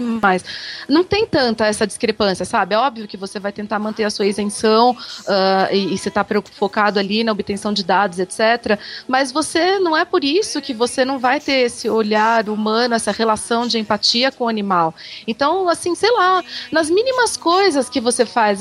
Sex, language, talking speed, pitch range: female, Portuguese, 190 wpm, 215-275 Hz